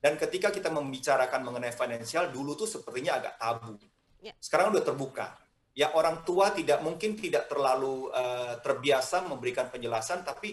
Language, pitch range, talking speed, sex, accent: Indonesian, 120-180 Hz, 150 wpm, male, native